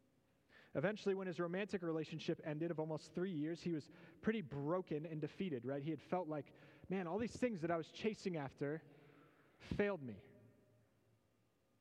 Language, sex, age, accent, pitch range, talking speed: English, male, 30-49, American, 130-165 Hz, 165 wpm